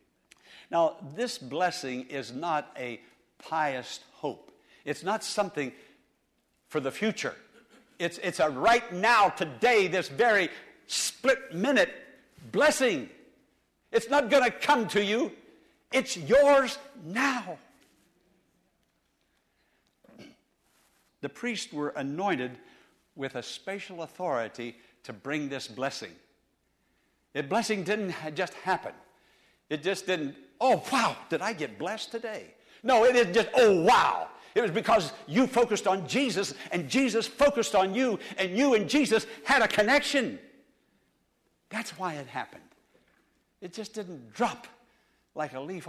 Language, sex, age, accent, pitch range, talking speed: English, male, 60-79, American, 160-250 Hz, 125 wpm